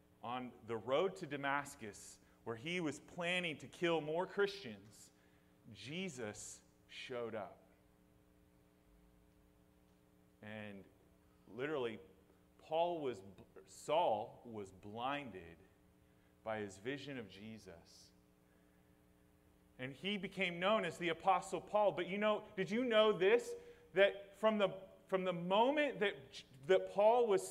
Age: 30-49